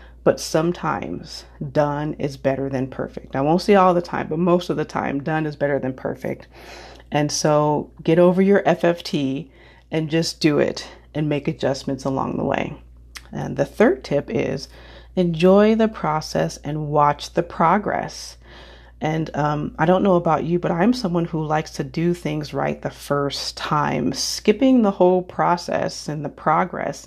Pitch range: 145-175 Hz